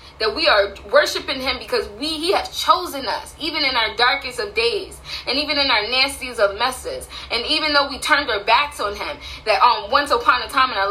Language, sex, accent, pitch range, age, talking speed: English, female, American, 250-320 Hz, 20-39, 220 wpm